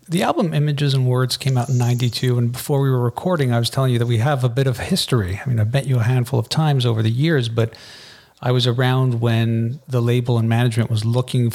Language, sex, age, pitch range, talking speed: English, male, 40-59, 120-140 Hz, 250 wpm